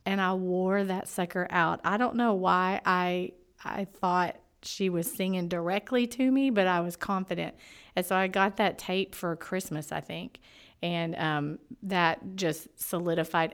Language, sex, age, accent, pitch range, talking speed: English, female, 40-59, American, 170-195 Hz, 170 wpm